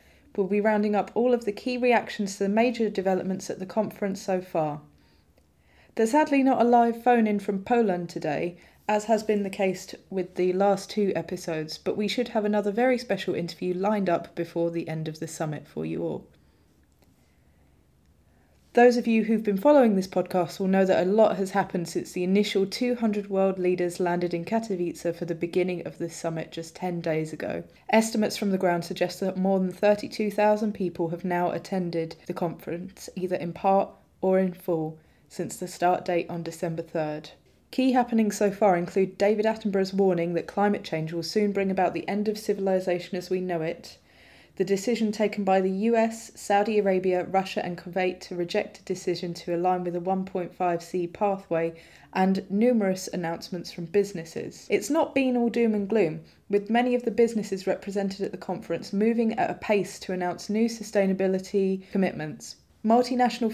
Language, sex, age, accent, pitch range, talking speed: English, female, 20-39, British, 175-210 Hz, 180 wpm